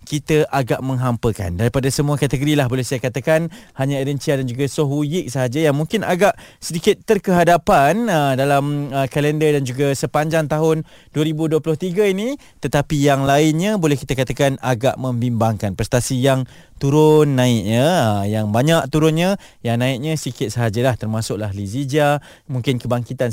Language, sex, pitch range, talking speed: Malay, male, 130-165 Hz, 145 wpm